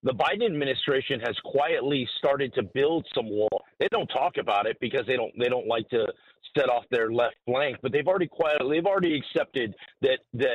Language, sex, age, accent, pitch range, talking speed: English, male, 40-59, American, 125-160 Hz, 200 wpm